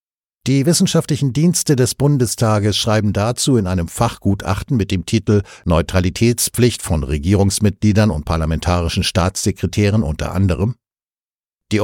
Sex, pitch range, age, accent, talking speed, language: male, 85-110 Hz, 60-79, German, 110 wpm, German